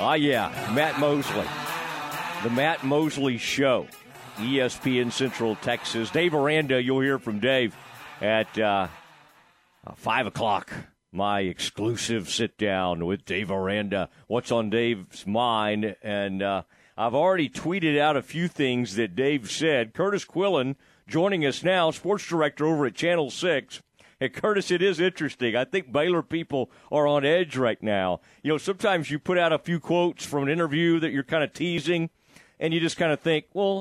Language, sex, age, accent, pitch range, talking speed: English, male, 50-69, American, 125-170 Hz, 165 wpm